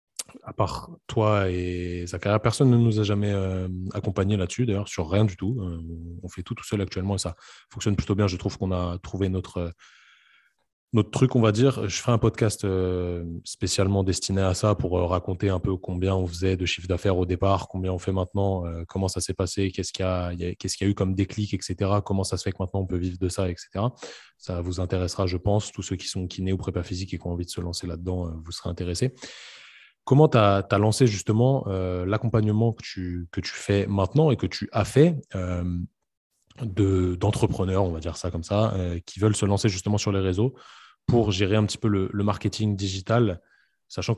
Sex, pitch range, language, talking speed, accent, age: male, 90-105 Hz, French, 220 wpm, French, 20-39